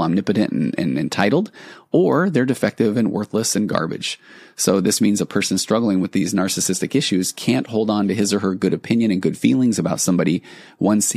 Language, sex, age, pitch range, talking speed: English, male, 30-49, 95-115 Hz, 195 wpm